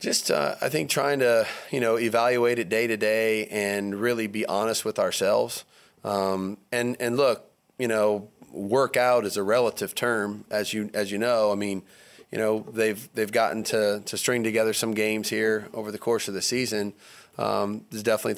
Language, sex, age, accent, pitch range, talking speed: English, male, 30-49, American, 105-115 Hz, 195 wpm